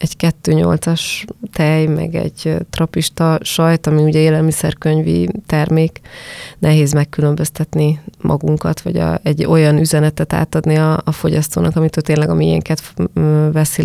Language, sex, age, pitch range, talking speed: Hungarian, female, 20-39, 150-165 Hz, 130 wpm